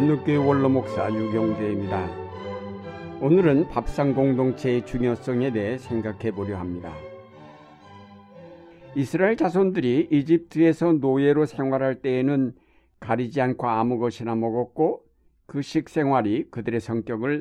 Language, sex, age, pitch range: Korean, male, 60-79, 110-140 Hz